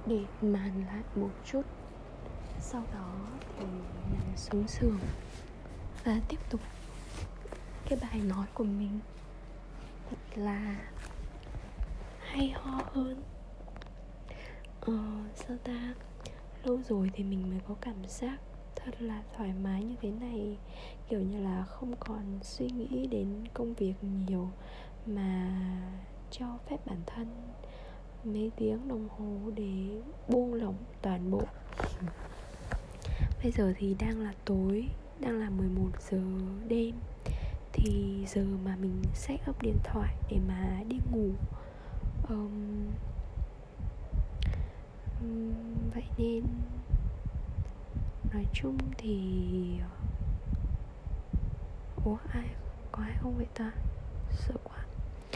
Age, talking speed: 20-39, 115 wpm